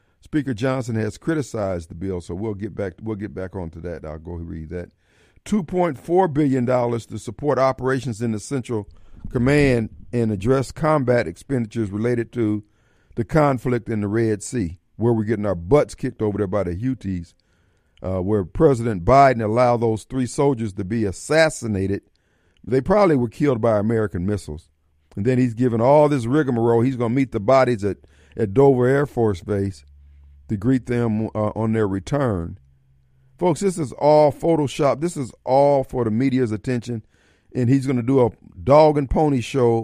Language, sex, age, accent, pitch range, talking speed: English, male, 50-69, American, 105-140 Hz, 180 wpm